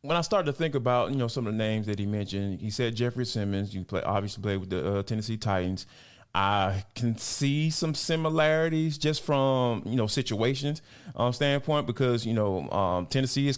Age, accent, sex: 20-39, American, male